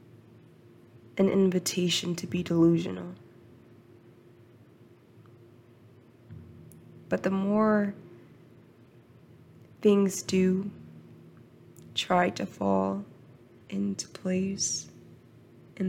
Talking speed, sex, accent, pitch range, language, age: 60 wpm, female, American, 120-185 Hz, English, 20-39